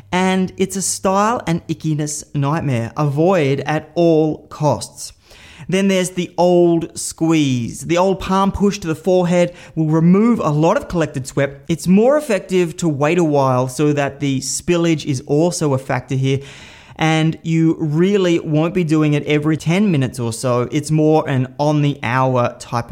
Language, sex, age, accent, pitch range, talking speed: English, male, 30-49, Australian, 135-170 Hz, 170 wpm